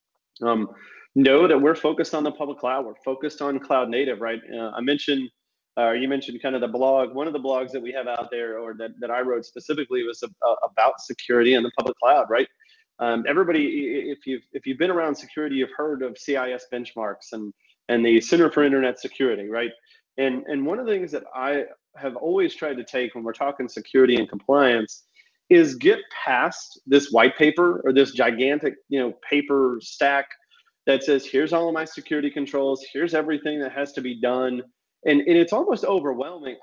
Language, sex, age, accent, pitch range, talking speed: English, male, 30-49, American, 125-150 Hz, 205 wpm